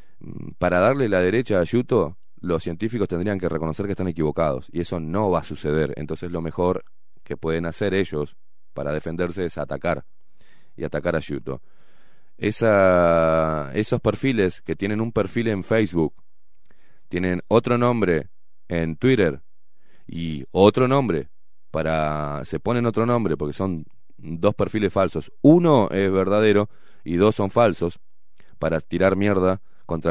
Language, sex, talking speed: Spanish, male, 145 wpm